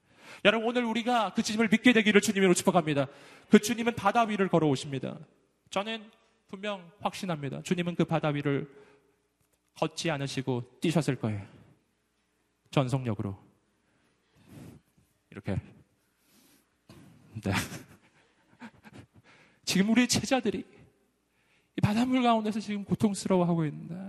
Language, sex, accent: Korean, male, native